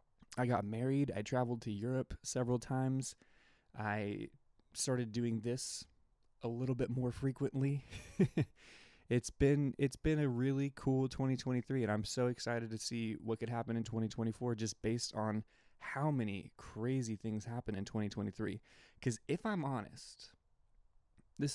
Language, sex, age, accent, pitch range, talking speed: English, male, 20-39, American, 110-130 Hz, 145 wpm